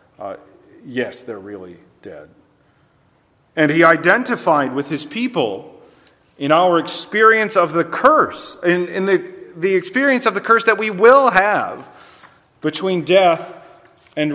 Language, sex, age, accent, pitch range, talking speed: English, male, 40-59, American, 140-195 Hz, 135 wpm